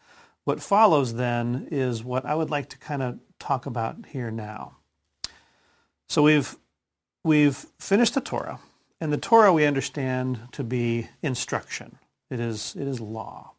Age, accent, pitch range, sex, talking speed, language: 40-59, American, 125-150 Hz, male, 145 wpm, English